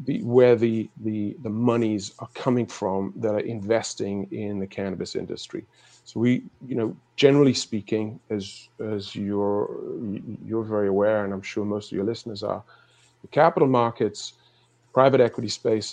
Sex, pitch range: male, 100-120 Hz